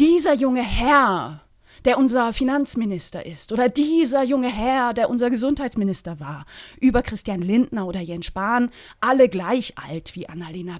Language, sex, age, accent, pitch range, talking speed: German, female, 30-49, German, 200-255 Hz, 145 wpm